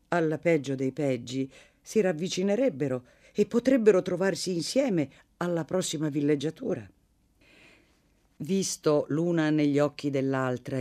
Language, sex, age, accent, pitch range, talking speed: Italian, female, 50-69, native, 115-170 Hz, 100 wpm